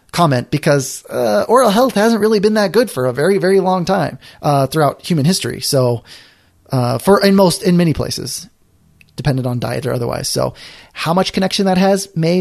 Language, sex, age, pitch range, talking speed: English, male, 20-39, 135-190 Hz, 195 wpm